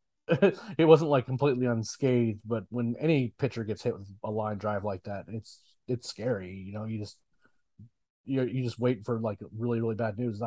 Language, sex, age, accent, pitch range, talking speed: English, male, 30-49, American, 115-130 Hz, 195 wpm